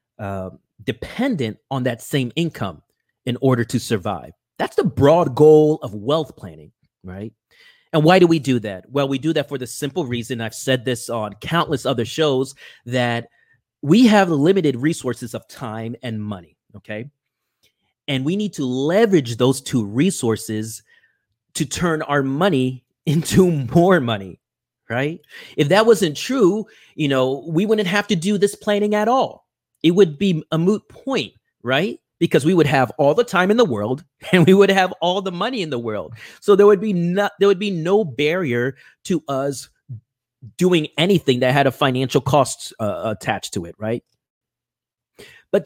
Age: 30-49